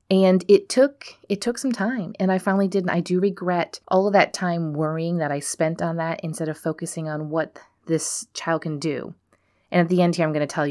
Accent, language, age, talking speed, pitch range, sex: American, English, 30-49, 240 wpm, 150-195 Hz, female